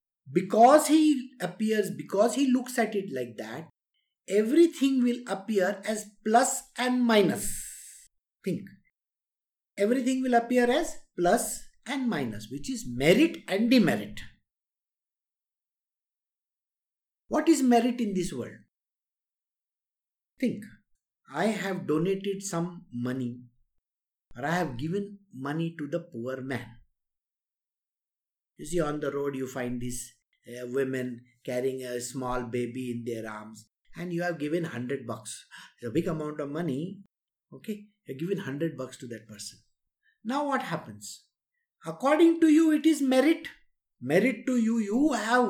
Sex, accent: male, Indian